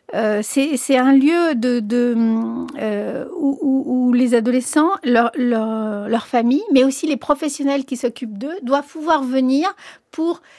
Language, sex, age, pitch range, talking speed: French, female, 50-69, 230-280 Hz, 160 wpm